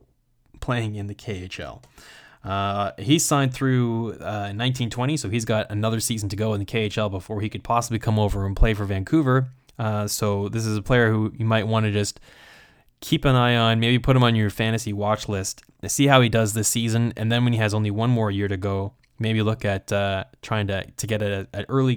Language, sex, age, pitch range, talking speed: English, male, 10-29, 105-125 Hz, 220 wpm